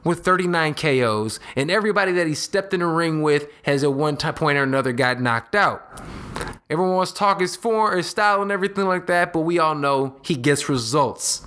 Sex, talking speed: male, 215 wpm